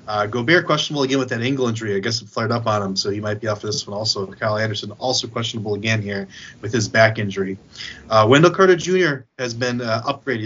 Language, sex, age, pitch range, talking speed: English, male, 30-49, 105-145 Hz, 240 wpm